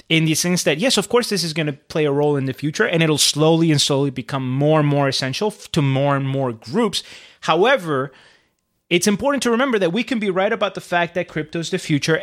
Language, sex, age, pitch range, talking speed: English, male, 30-49, 145-205 Hz, 245 wpm